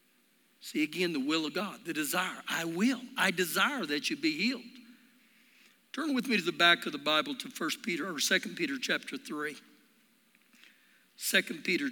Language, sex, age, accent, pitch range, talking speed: English, male, 60-79, American, 185-255 Hz, 175 wpm